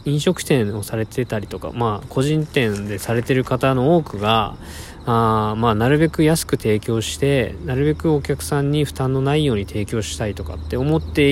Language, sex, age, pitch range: Japanese, male, 20-39, 100-140 Hz